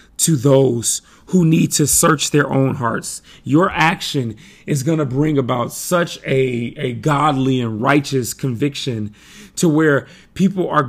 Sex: male